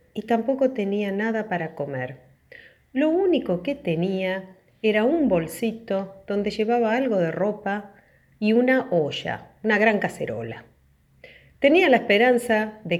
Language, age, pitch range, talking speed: Spanish, 40-59, 170-225 Hz, 130 wpm